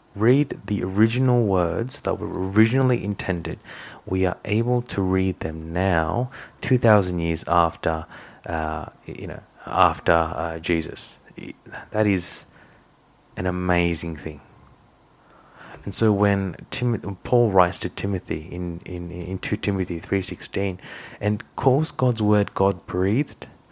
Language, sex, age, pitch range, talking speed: English, male, 30-49, 85-115 Hz, 130 wpm